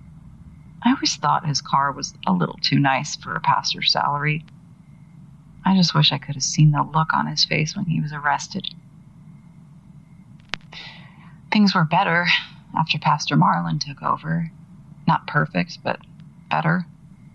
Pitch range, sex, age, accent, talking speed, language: 160-190 Hz, female, 30-49, American, 145 wpm, English